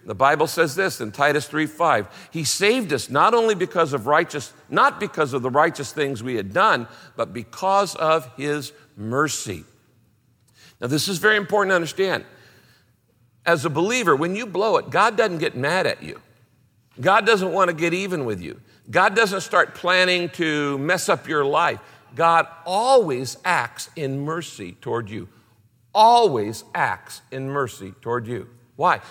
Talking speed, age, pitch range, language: 165 wpm, 50-69, 125-180 Hz, English